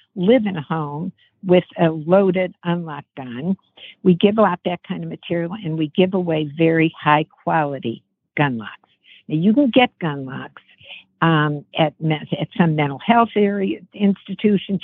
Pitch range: 155-190 Hz